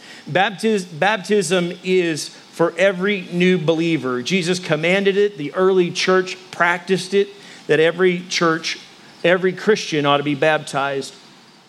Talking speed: 125 wpm